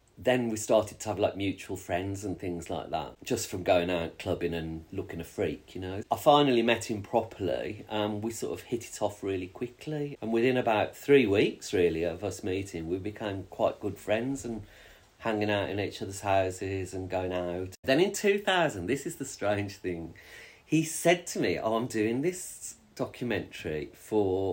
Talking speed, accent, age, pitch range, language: 195 wpm, British, 40-59, 95-140 Hz, English